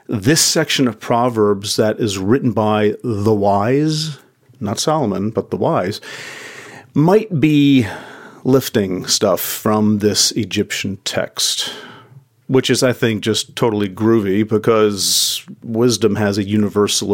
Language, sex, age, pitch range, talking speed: English, male, 40-59, 105-130 Hz, 125 wpm